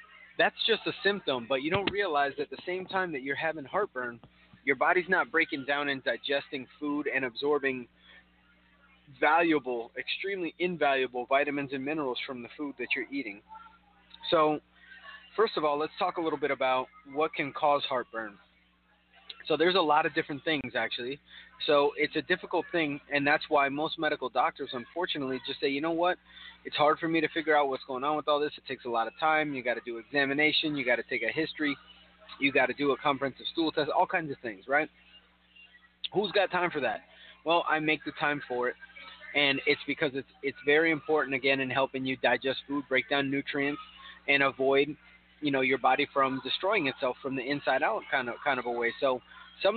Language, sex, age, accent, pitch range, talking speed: English, male, 30-49, American, 135-160 Hz, 200 wpm